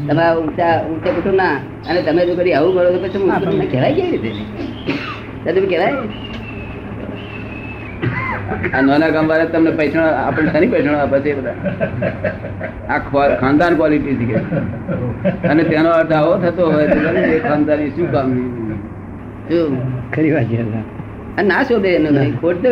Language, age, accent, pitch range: Gujarati, 30-49, native, 115-180 Hz